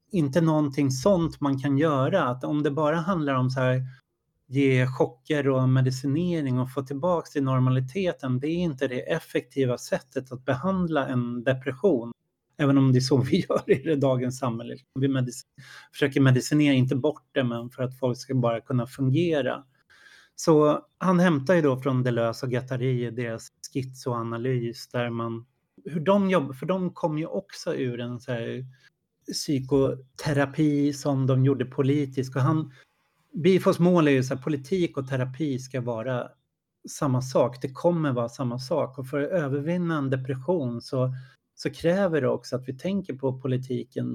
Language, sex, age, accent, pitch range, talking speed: Swedish, male, 30-49, native, 130-155 Hz, 165 wpm